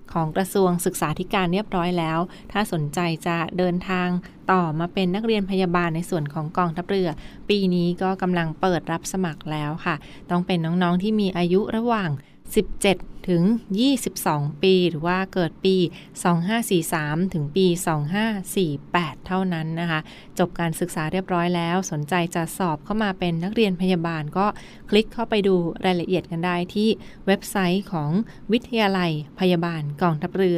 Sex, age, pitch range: female, 20-39, 170-195 Hz